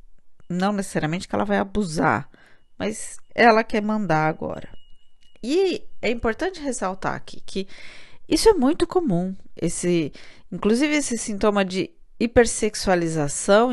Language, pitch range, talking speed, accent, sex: Portuguese, 175-235 Hz, 115 wpm, Brazilian, female